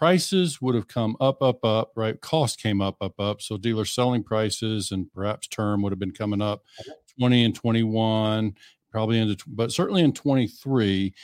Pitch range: 105-125 Hz